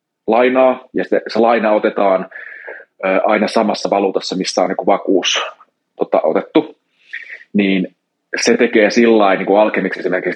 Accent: native